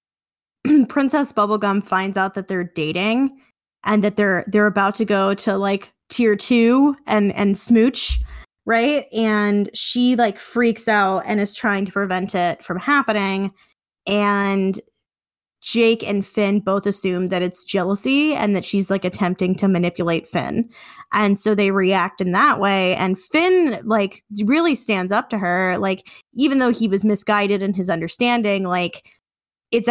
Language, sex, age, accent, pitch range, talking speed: English, female, 20-39, American, 185-225 Hz, 155 wpm